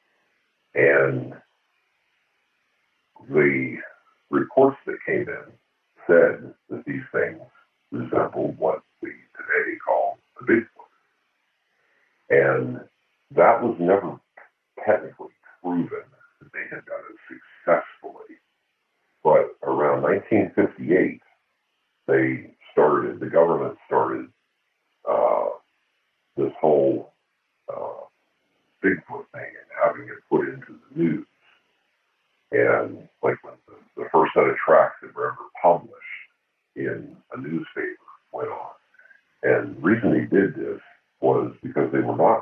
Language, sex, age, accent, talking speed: English, female, 60-79, American, 110 wpm